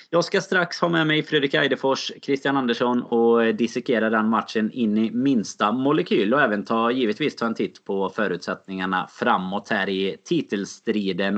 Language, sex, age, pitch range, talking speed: Swedish, male, 20-39, 105-140 Hz, 165 wpm